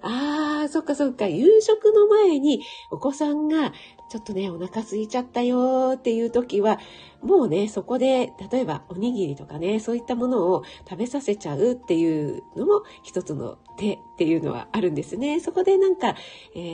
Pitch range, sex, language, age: 180-270 Hz, female, Japanese, 40-59